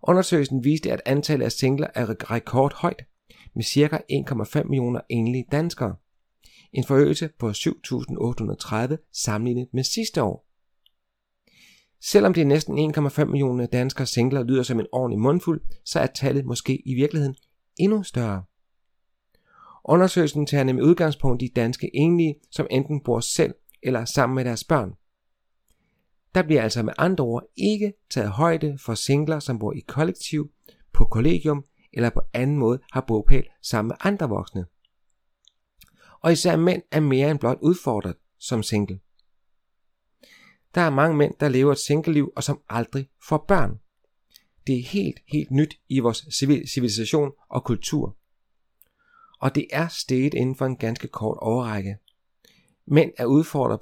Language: Danish